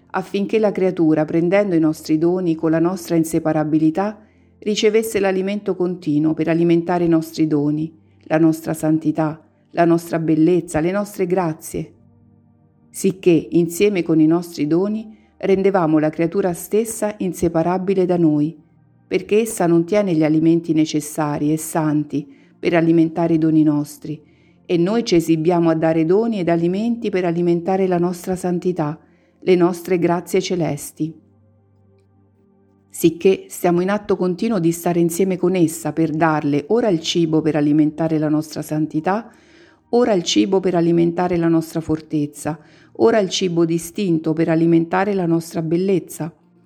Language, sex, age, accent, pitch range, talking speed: Italian, female, 50-69, native, 155-190 Hz, 140 wpm